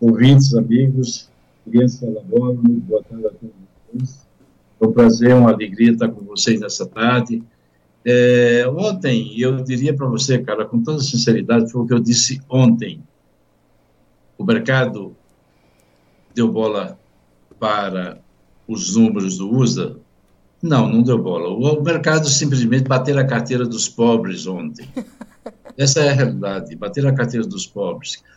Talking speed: 140 wpm